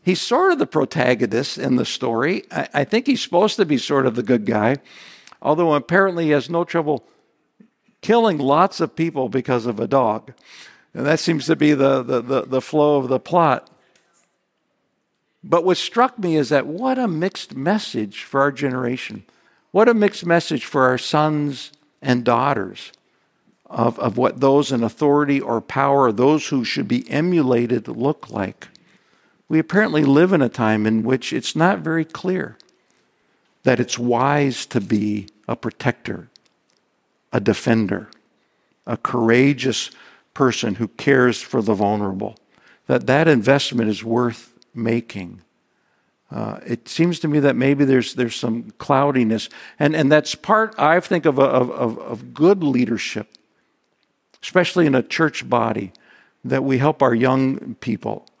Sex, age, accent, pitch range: male, 60-79, American, 120-165 Hz